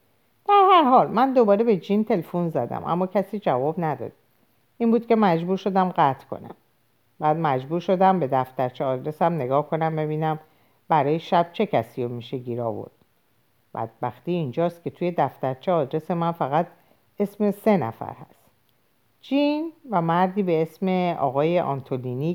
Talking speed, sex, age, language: 155 wpm, female, 50-69, Persian